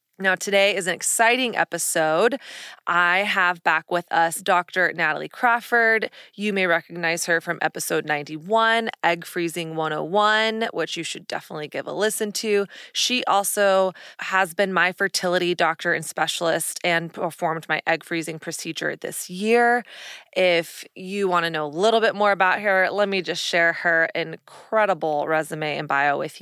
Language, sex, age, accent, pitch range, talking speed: English, female, 20-39, American, 165-205 Hz, 160 wpm